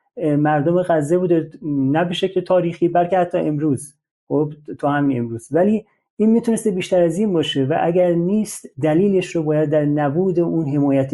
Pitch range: 150-190 Hz